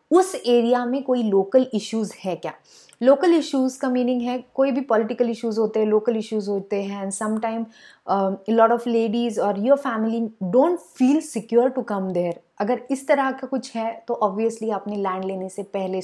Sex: female